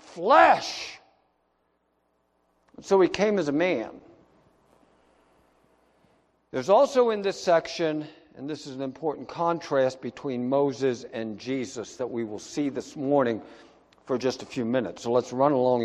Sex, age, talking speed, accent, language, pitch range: male, 60-79, 140 wpm, American, English, 110-160 Hz